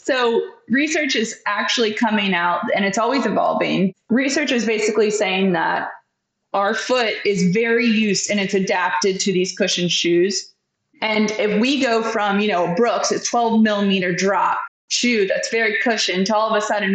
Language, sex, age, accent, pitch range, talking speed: English, female, 20-39, American, 200-240 Hz, 170 wpm